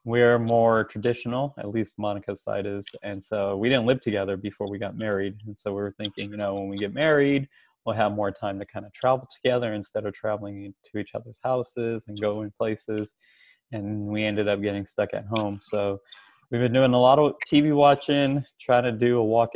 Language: English